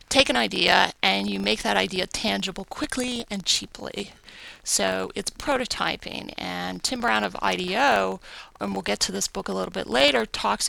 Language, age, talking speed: English, 40-59, 175 wpm